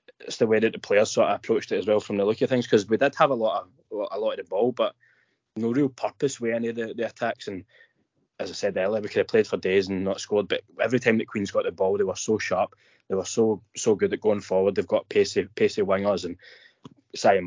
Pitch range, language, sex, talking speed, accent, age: 105-145 Hz, English, male, 275 wpm, British, 20-39